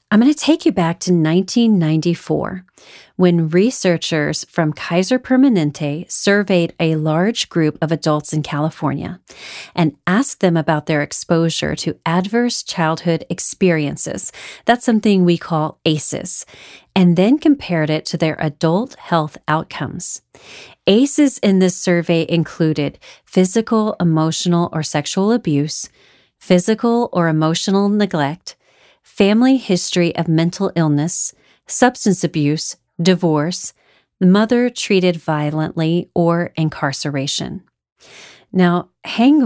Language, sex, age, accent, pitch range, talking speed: English, female, 30-49, American, 160-200 Hz, 110 wpm